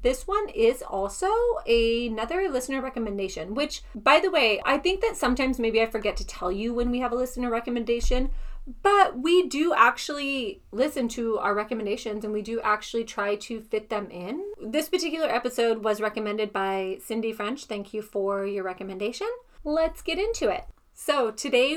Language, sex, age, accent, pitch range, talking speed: English, female, 30-49, American, 210-275 Hz, 175 wpm